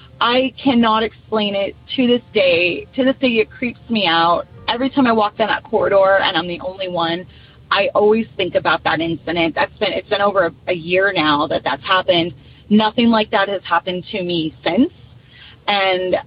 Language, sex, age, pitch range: English, female, 30-49, 190-250 Hz